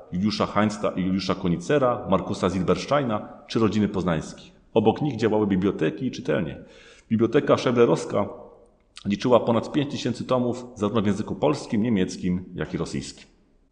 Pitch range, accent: 100-120 Hz, native